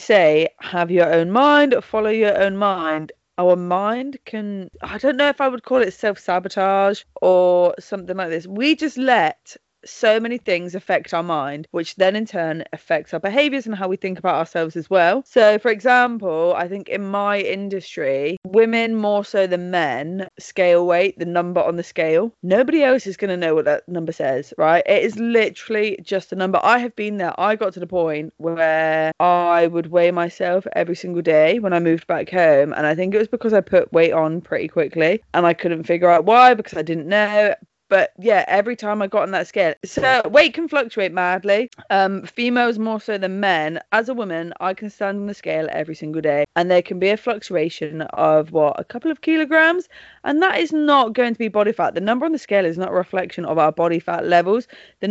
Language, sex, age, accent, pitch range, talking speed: English, female, 20-39, British, 170-220 Hz, 215 wpm